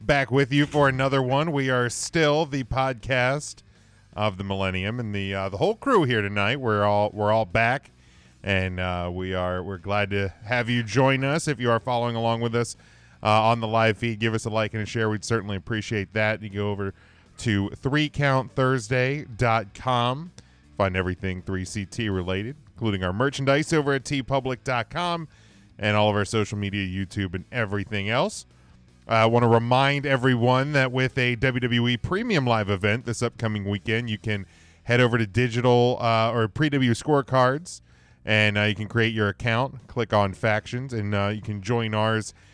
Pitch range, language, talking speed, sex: 100-130 Hz, English, 180 wpm, male